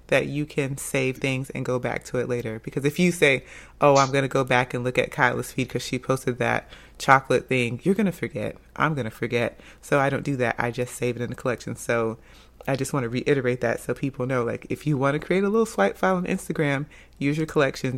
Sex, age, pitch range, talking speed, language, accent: female, 30-49, 125-155 Hz, 240 wpm, English, American